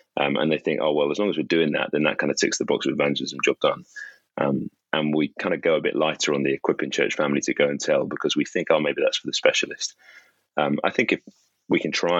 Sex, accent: male, British